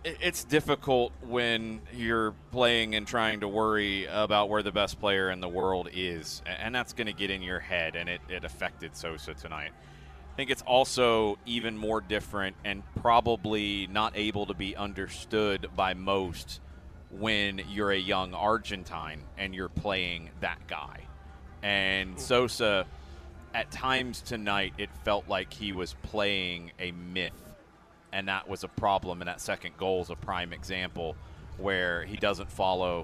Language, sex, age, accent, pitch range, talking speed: English, male, 30-49, American, 90-105 Hz, 160 wpm